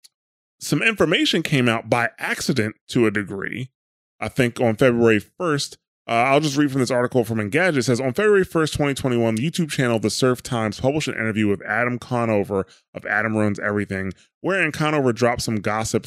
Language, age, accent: English, 20-39, American